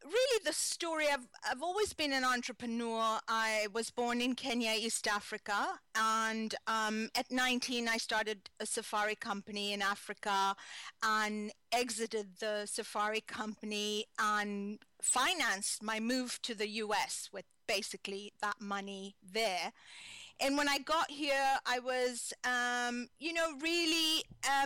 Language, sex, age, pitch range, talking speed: English, female, 40-59, 215-260 Hz, 135 wpm